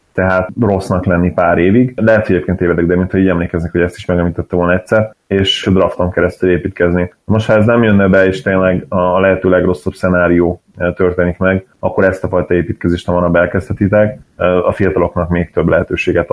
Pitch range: 90-100 Hz